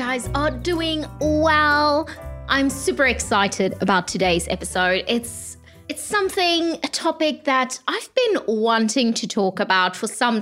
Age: 20-39